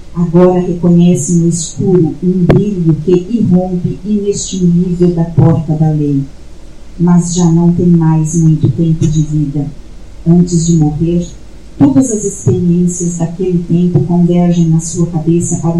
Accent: Brazilian